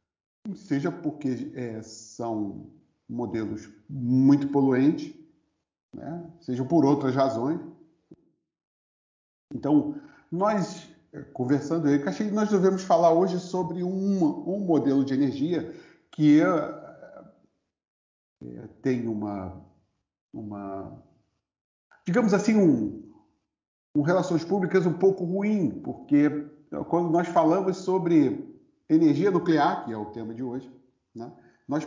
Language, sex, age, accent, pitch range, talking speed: Portuguese, male, 50-69, Brazilian, 115-175 Hz, 105 wpm